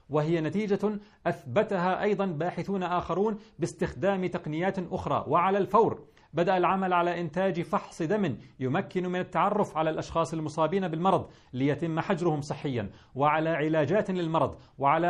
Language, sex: Arabic, male